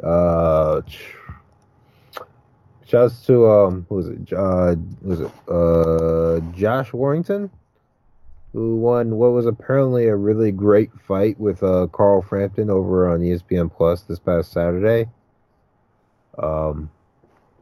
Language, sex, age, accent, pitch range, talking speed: English, male, 30-49, American, 90-115 Hz, 125 wpm